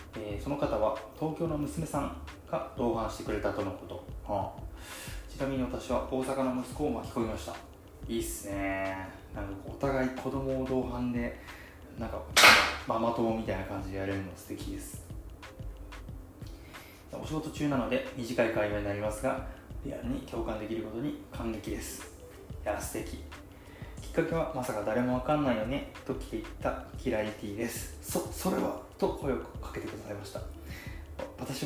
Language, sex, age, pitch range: Japanese, male, 20-39, 100-140 Hz